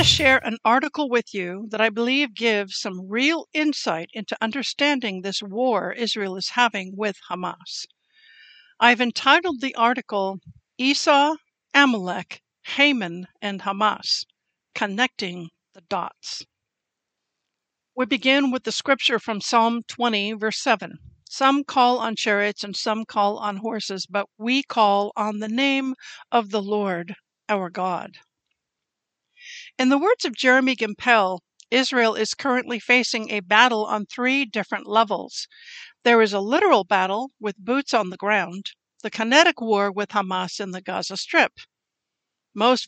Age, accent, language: 60-79, American, English